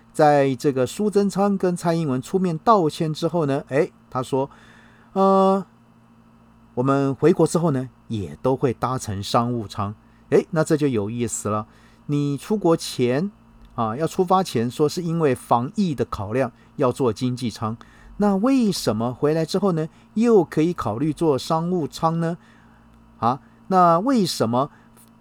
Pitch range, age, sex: 115-155 Hz, 50-69, male